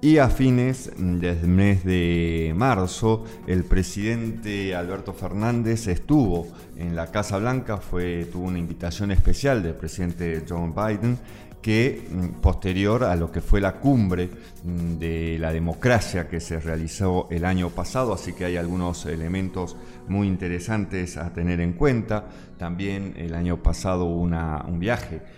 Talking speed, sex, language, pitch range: 140 wpm, male, Spanish, 85-100 Hz